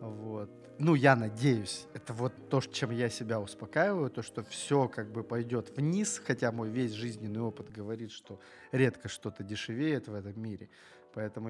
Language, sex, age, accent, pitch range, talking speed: Russian, male, 20-39, native, 105-125 Hz, 165 wpm